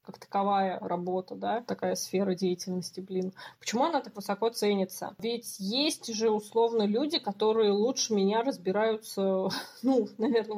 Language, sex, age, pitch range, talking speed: Russian, female, 20-39, 200-255 Hz, 135 wpm